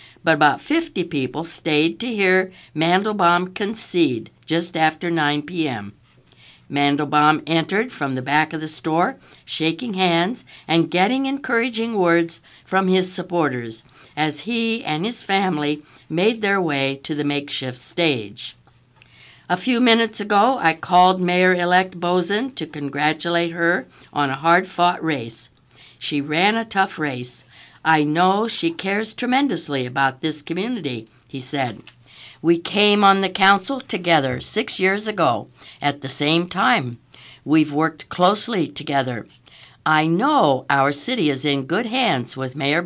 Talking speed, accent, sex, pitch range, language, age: 140 wpm, American, female, 140-190 Hz, English, 60-79